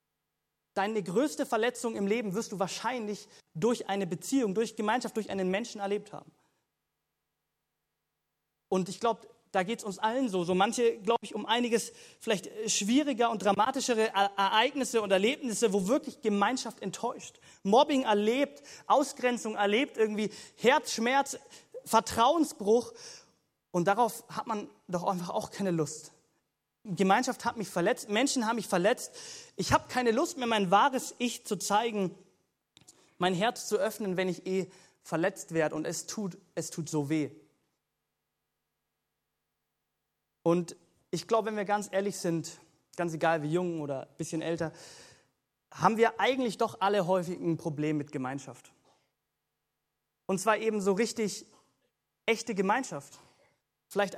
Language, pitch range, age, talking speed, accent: German, 180-230 Hz, 30-49, 140 wpm, German